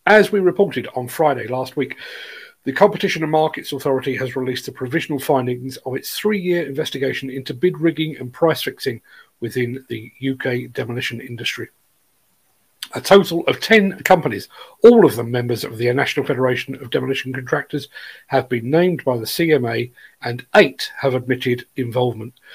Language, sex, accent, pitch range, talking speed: English, male, British, 125-160 Hz, 155 wpm